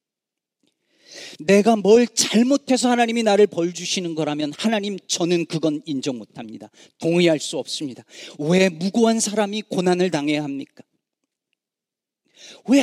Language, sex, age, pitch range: Korean, male, 40-59, 145-210 Hz